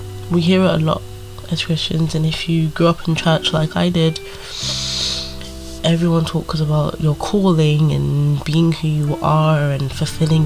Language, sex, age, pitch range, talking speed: English, female, 20-39, 145-175 Hz, 165 wpm